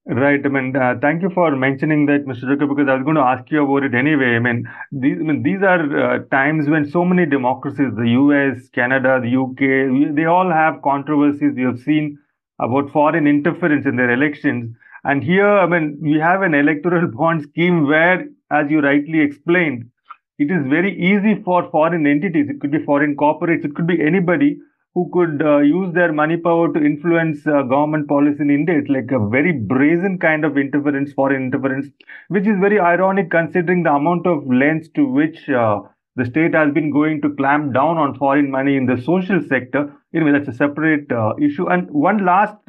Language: English